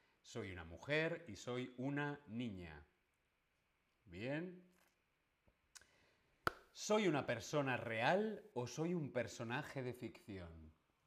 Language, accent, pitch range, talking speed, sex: Spanish, Spanish, 100-150 Hz, 100 wpm, male